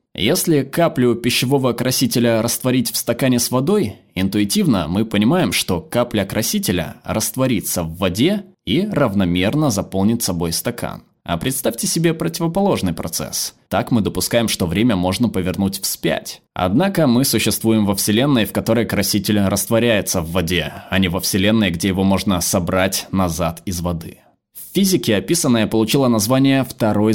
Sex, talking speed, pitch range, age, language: male, 140 wpm, 95-130 Hz, 20-39, Russian